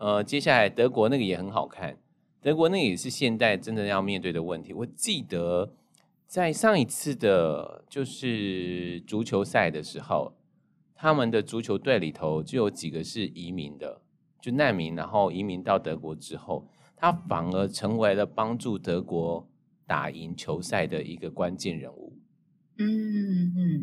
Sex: male